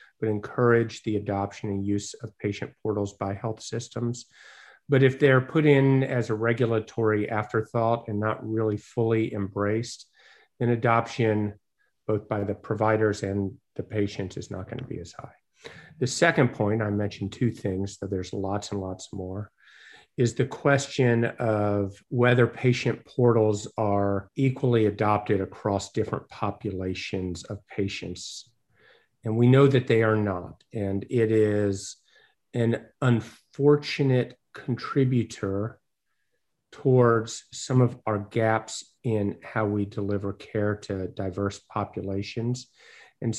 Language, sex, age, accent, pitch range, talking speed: English, male, 50-69, American, 100-120 Hz, 135 wpm